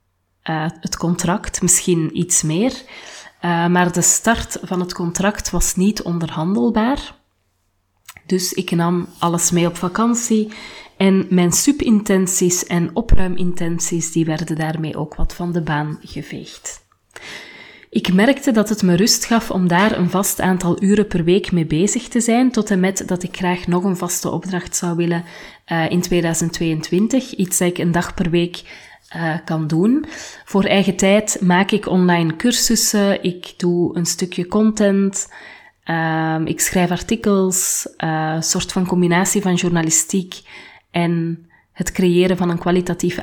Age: 30-49